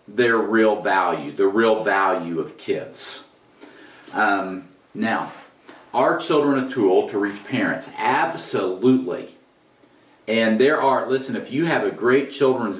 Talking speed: 130 wpm